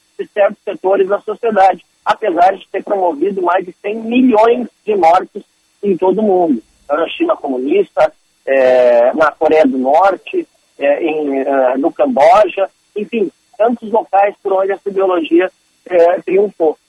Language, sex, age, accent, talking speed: Portuguese, male, 50-69, Brazilian, 130 wpm